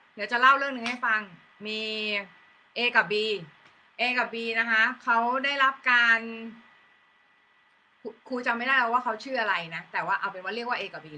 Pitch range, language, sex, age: 220-260 Hz, Thai, female, 20-39